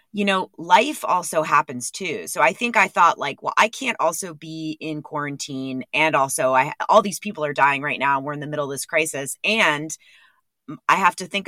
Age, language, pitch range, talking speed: 30-49, English, 130-175 Hz, 215 wpm